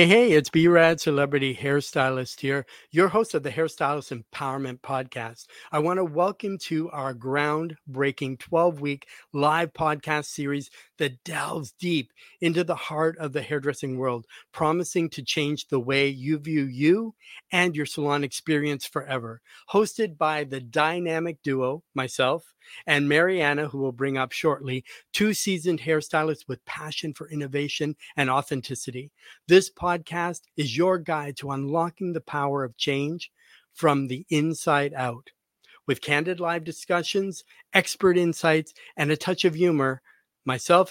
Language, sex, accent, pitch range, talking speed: English, male, American, 140-165 Hz, 140 wpm